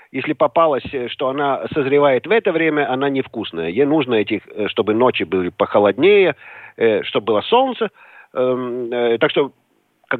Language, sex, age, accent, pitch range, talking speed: Russian, male, 50-69, native, 130-215 Hz, 145 wpm